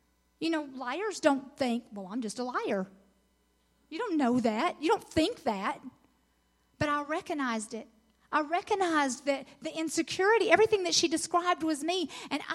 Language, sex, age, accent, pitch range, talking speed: English, female, 40-59, American, 285-370 Hz, 165 wpm